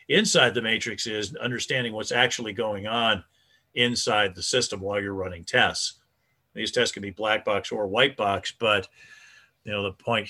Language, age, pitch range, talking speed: English, 50-69, 100-120 Hz, 175 wpm